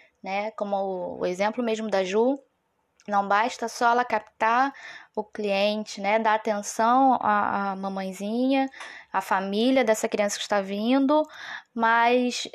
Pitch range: 205-255 Hz